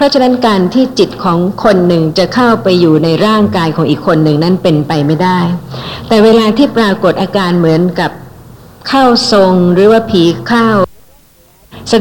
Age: 60-79